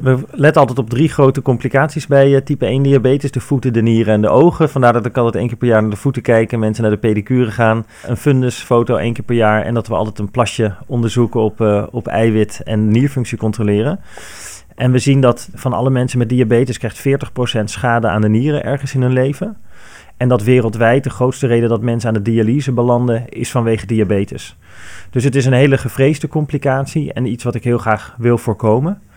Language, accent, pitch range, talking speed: Dutch, Dutch, 115-135 Hz, 210 wpm